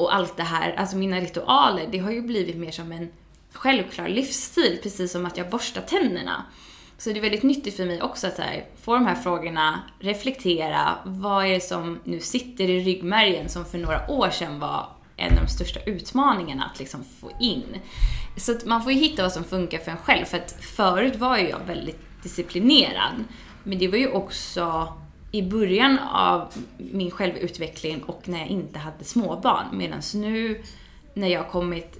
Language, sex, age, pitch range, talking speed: Swedish, female, 20-39, 170-225 Hz, 190 wpm